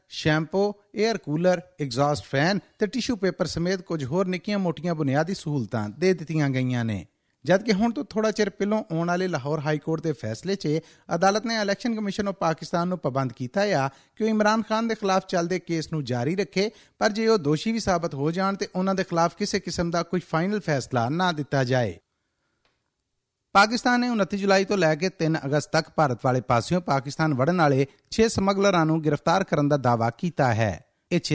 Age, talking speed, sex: 50-69, 195 wpm, male